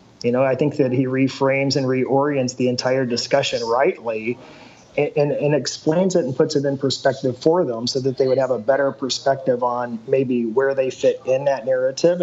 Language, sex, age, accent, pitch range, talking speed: English, male, 30-49, American, 125-150 Hz, 200 wpm